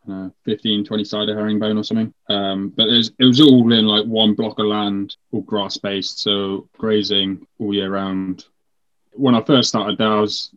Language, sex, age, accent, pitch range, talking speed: English, male, 20-39, British, 100-110 Hz, 180 wpm